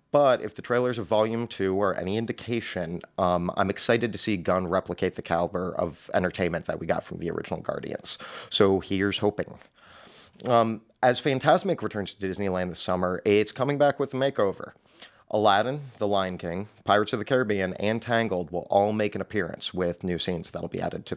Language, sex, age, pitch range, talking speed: English, male, 30-49, 90-120 Hz, 195 wpm